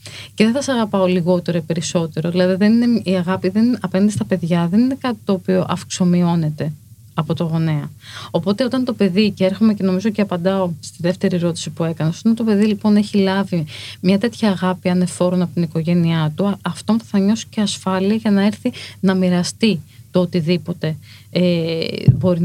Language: Greek